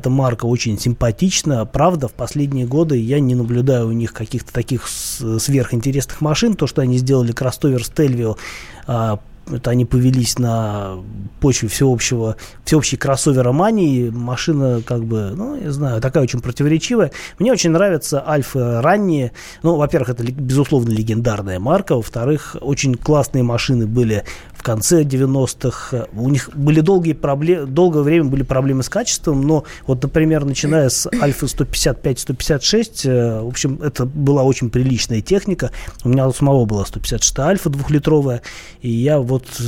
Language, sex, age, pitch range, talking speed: Russian, male, 20-39, 120-150 Hz, 145 wpm